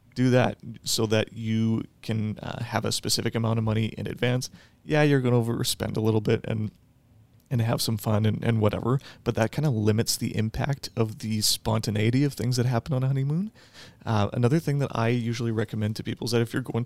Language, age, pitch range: English, 30-49, 110-125 Hz